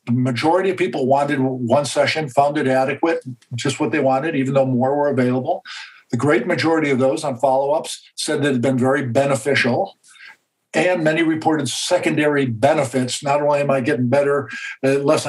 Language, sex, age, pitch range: English, male, 50-69, 130-155 Hz